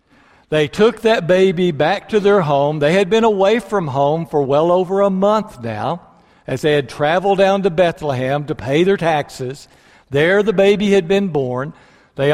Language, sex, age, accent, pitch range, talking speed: English, male, 60-79, American, 135-195 Hz, 185 wpm